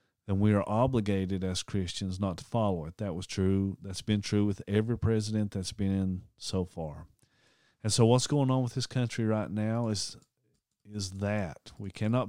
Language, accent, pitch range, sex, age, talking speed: English, American, 95-115 Hz, male, 40-59, 190 wpm